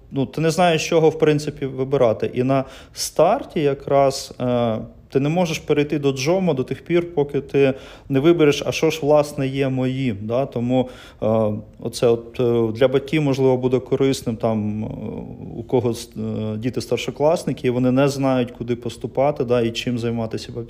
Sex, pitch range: male, 120-150 Hz